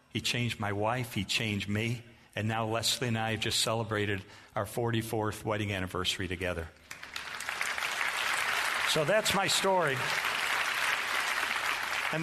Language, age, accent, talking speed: English, 50-69, American, 125 wpm